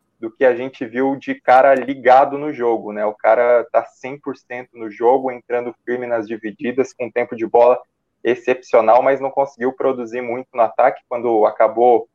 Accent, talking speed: Brazilian, 180 wpm